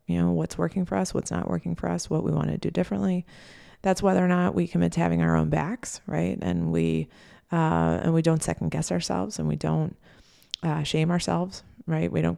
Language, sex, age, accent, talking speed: English, female, 30-49, American, 230 wpm